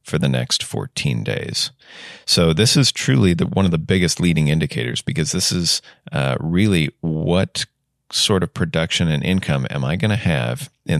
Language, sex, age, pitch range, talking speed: English, male, 30-49, 75-100 Hz, 180 wpm